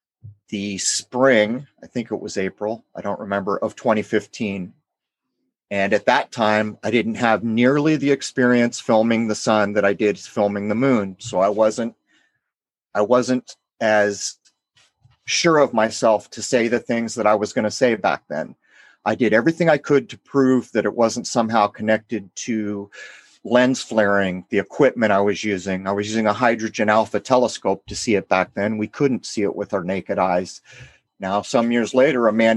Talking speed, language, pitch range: 180 wpm, English, 105-120 Hz